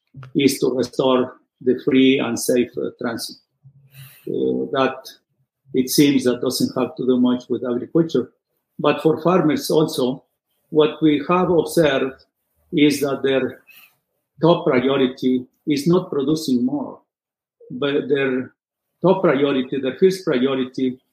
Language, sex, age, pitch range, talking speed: English, male, 50-69, 125-150 Hz, 130 wpm